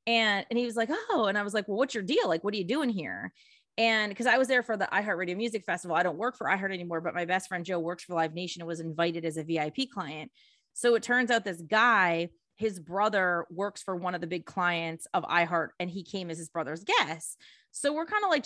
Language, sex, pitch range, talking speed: English, female, 185-235 Hz, 265 wpm